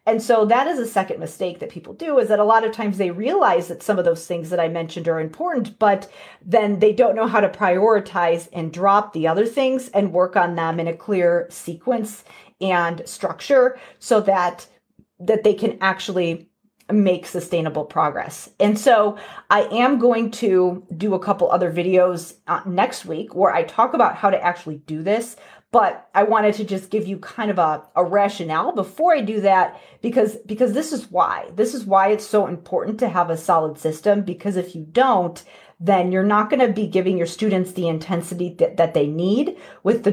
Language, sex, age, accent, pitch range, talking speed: English, female, 30-49, American, 175-220 Hz, 205 wpm